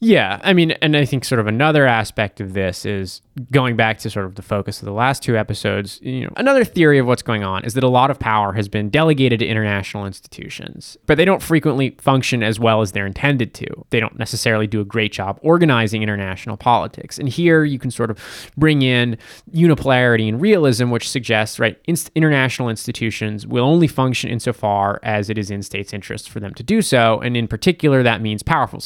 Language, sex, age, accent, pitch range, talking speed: English, male, 20-39, American, 105-140 Hz, 215 wpm